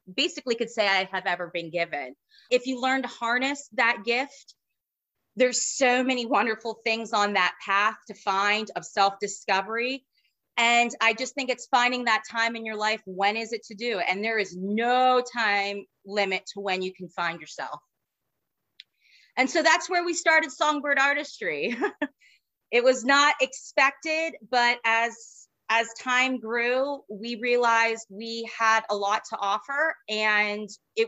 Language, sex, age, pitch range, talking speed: English, female, 30-49, 200-255 Hz, 160 wpm